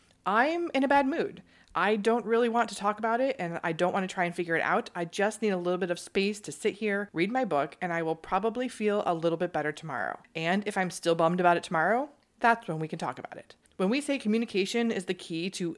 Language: English